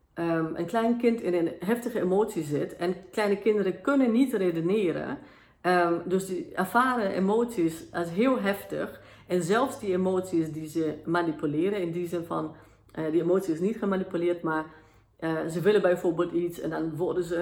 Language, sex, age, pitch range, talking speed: Dutch, female, 40-59, 165-200 Hz, 170 wpm